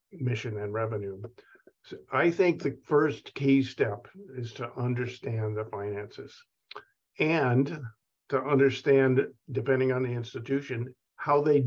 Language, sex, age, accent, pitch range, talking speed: English, male, 50-69, American, 115-140 Hz, 120 wpm